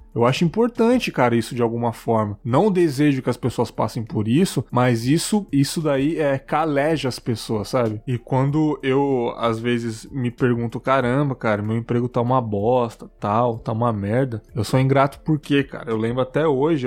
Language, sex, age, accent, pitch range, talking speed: Portuguese, male, 20-39, Brazilian, 120-155 Hz, 190 wpm